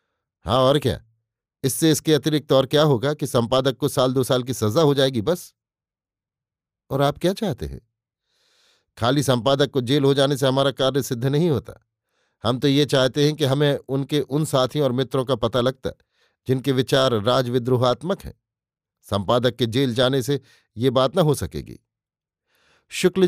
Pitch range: 115-145 Hz